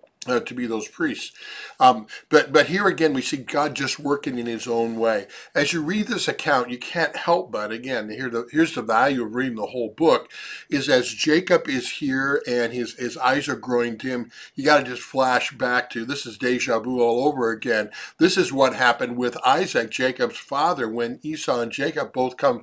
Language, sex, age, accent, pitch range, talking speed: English, male, 50-69, American, 120-150 Hz, 210 wpm